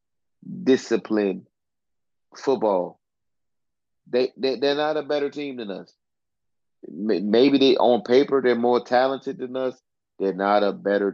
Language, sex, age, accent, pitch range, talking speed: English, male, 30-49, American, 100-125 Hz, 130 wpm